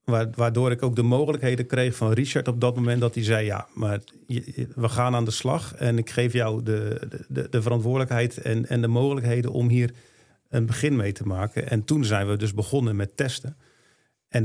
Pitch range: 115-140 Hz